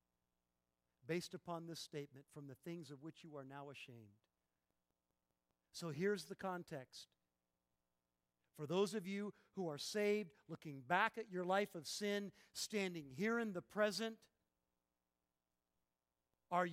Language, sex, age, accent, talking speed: English, male, 50-69, American, 135 wpm